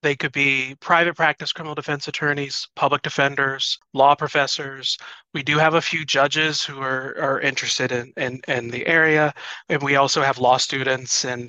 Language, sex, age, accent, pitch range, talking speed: English, male, 30-49, American, 130-155 Hz, 180 wpm